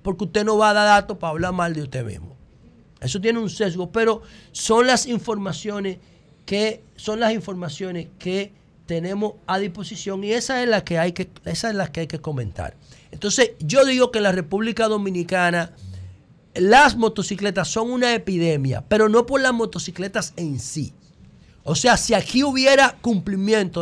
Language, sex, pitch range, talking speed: Spanish, male, 165-225 Hz, 155 wpm